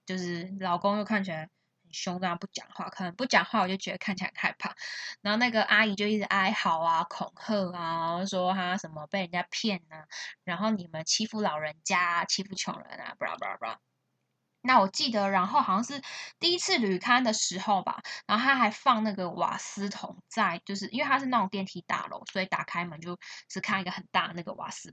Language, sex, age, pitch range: Chinese, female, 10-29, 180-225 Hz